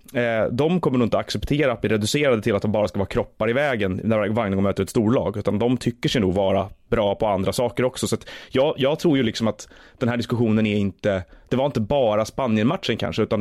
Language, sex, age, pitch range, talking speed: Swedish, male, 30-49, 105-130 Hz, 240 wpm